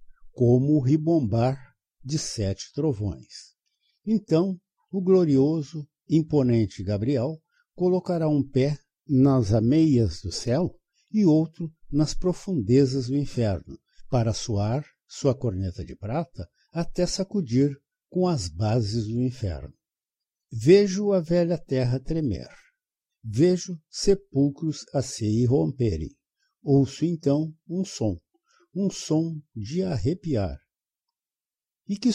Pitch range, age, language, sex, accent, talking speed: 120-170 Hz, 60-79, Portuguese, male, Brazilian, 105 wpm